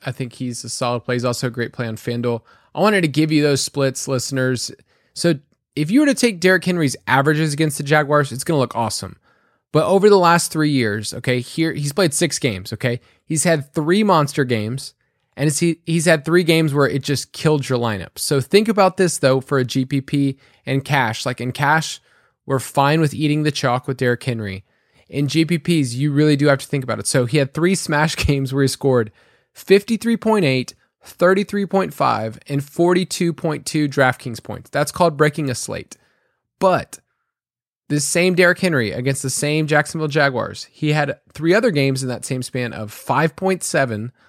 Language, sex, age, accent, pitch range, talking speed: English, male, 20-39, American, 130-160 Hz, 190 wpm